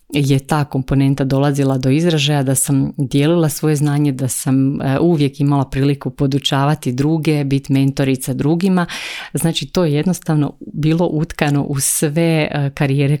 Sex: female